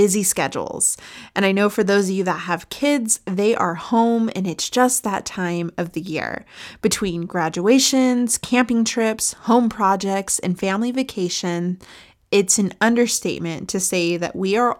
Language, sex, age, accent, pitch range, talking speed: English, female, 20-39, American, 175-220 Hz, 160 wpm